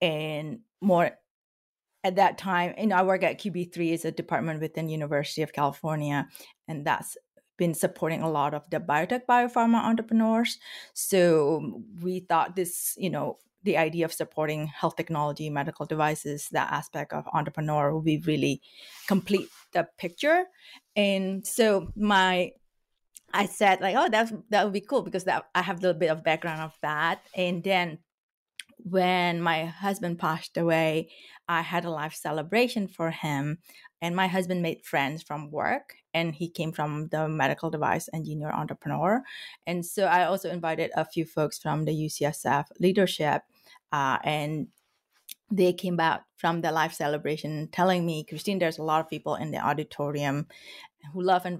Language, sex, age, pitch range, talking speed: English, female, 30-49, 155-185 Hz, 160 wpm